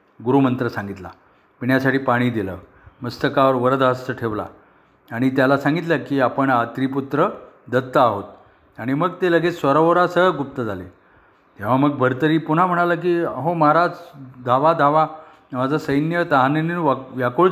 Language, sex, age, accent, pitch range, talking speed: Marathi, male, 40-59, native, 125-150 Hz, 130 wpm